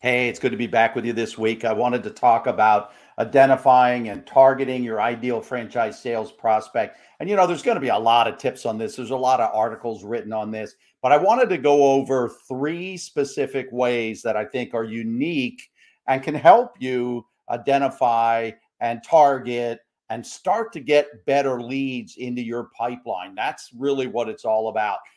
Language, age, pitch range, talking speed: English, 50-69, 120-180 Hz, 190 wpm